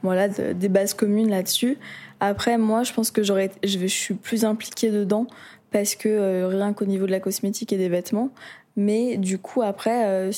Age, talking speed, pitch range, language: 20-39, 210 wpm, 200-225 Hz, French